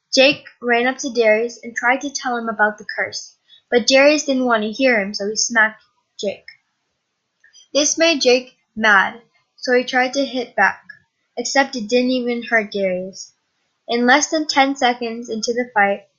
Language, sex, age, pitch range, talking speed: English, female, 10-29, 220-270 Hz, 180 wpm